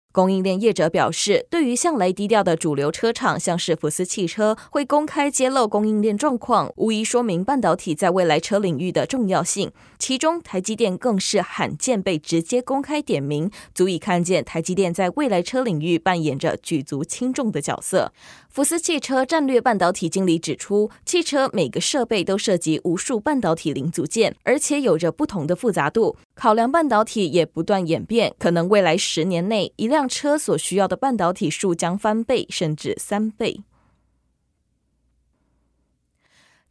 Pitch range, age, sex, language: 170-250 Hz, 20-39, female, Chinese